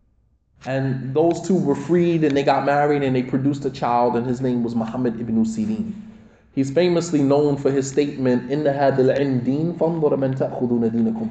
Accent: American